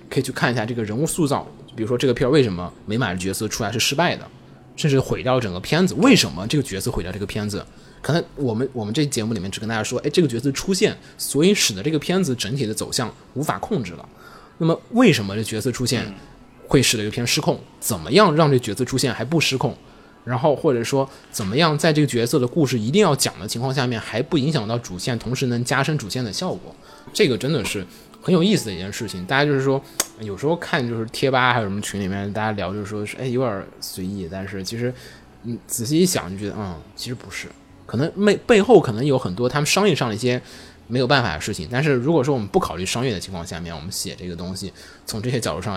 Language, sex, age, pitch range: Chinese, male, 20-39, 100-135 Hz